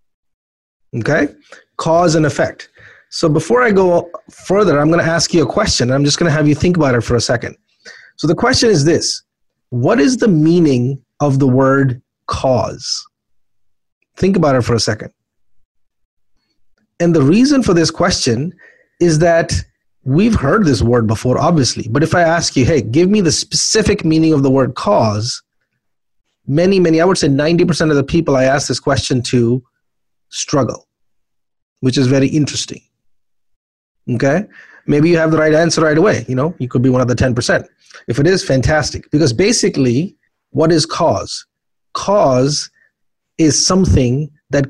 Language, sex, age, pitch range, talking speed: English, male, 30-49, 125-170 Hz, 170 wpm